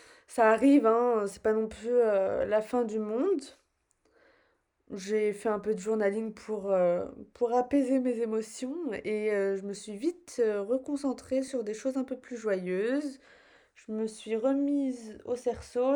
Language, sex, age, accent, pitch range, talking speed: French, female, 20-39, French, 200-245 Hz, 160 wpm